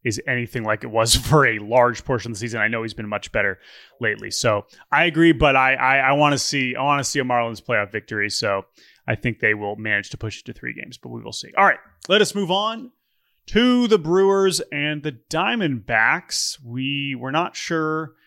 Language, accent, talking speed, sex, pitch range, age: English, American, 225 wpm, male, 120-160 Hz, 30-49